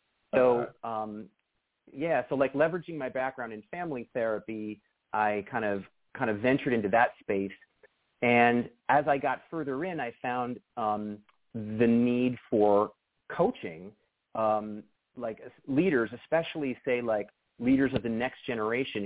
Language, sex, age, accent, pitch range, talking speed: English, male, 40-59, American, 105-130 Hz, 140 wpm